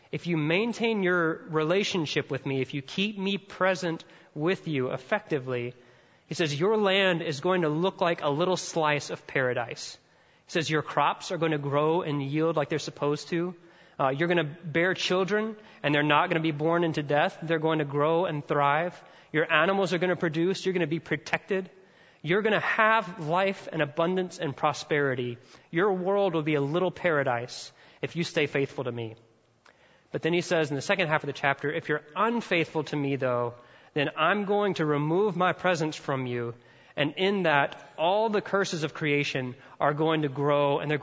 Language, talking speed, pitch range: English, 200 wpm, 145-180 Hz